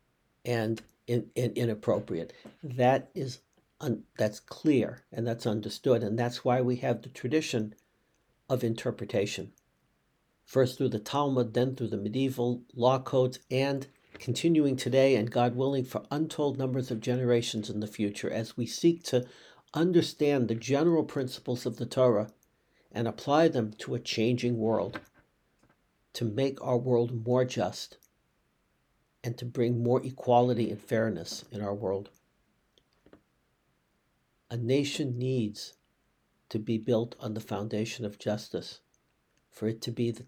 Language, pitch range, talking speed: English, 110-130 Hz, 135 wpm